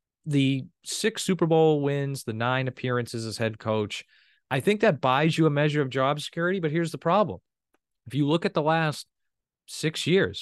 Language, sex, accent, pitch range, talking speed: English, male, American, 115-155 Hz, 190 wpm